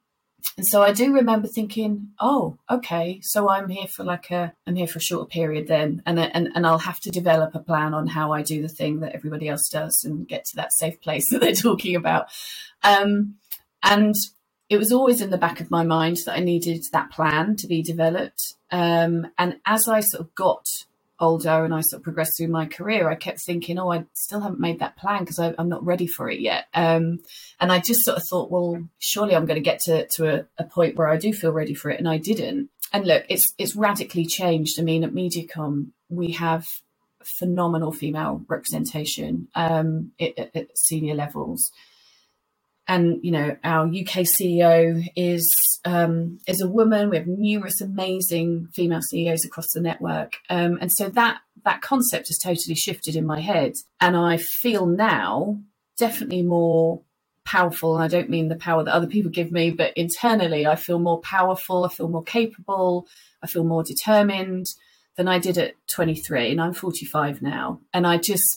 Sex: female